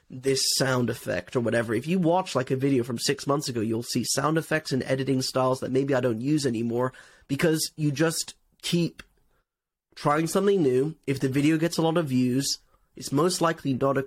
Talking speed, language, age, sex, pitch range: 205 wpm, English, 30-49, male, 130-160 Hz